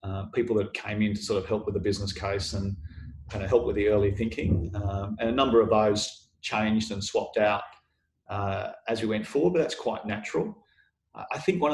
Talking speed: 220 wpm